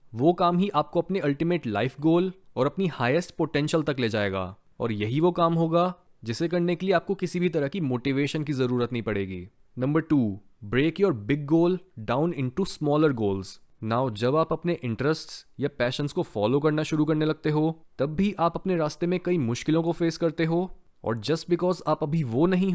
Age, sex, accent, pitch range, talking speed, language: 20-39, male, native, 125-175 Hz, 205 wpm, Hindi